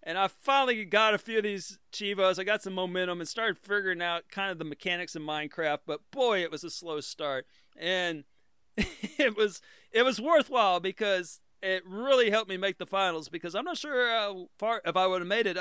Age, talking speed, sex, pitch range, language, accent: 40-59, 215 wpm, male, 155-195 Hz, English, American